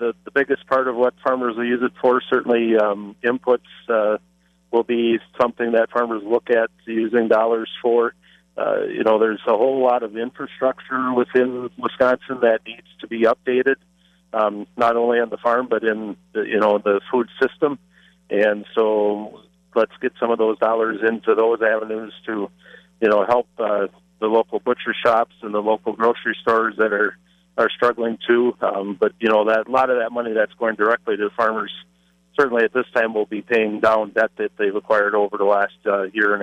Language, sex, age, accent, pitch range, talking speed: English, male, 40-59, American, 105-125 Hz, 195 wpm